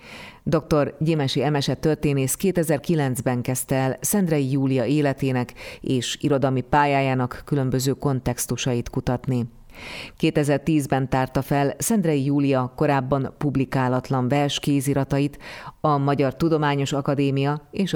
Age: 30-49